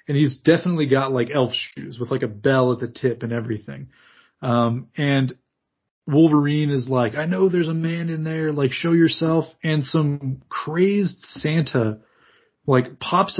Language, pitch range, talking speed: English, 125-155 Hz, 165 wpm